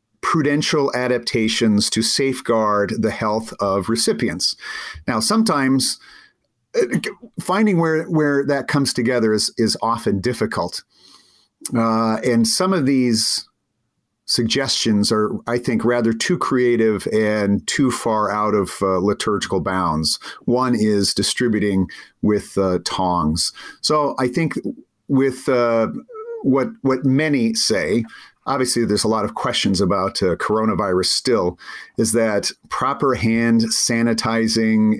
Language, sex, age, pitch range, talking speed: English, male, 50-69, 105-130 Hz, 120 wpm